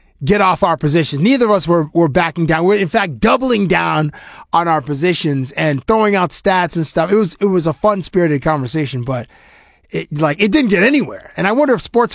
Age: 30-49